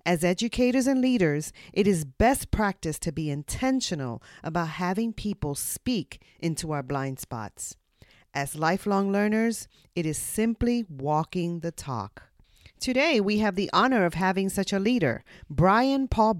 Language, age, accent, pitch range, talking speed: English, 40-59, American, 150-225 Hz, 145 wpm